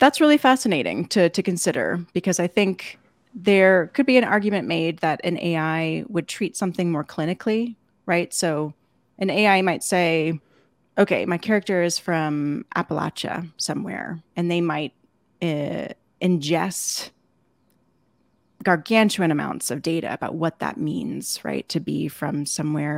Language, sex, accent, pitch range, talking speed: English, female, American, 160-195 Hz, 140 wpm